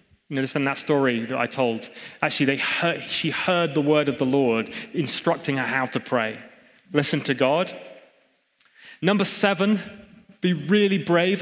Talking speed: 170 wpm